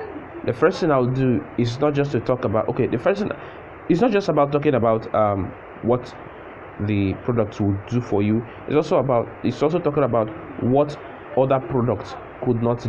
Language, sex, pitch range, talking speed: English, male, 105-125 Hz, 190 wpm